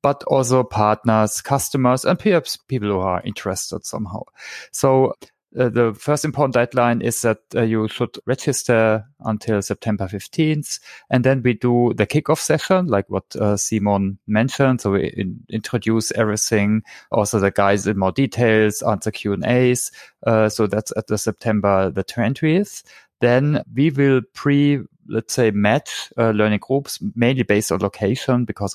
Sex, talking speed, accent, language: male, 155 wpm, German, English